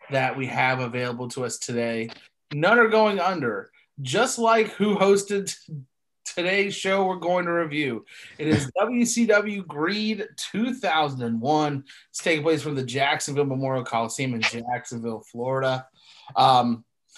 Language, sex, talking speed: English, male, 135 wpm